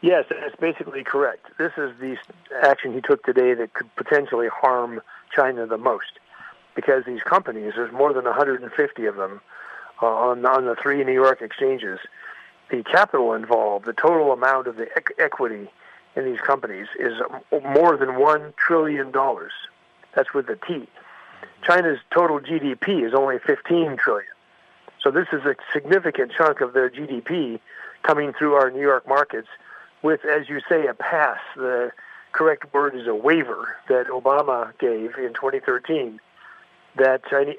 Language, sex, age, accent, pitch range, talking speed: English, male, 50-69, American, 130-165 Hz, 155 wpm